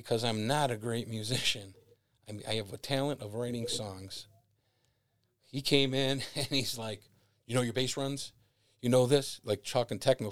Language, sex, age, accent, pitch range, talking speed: English, male, 40-59, American, 110-130 Hz, 190 wpm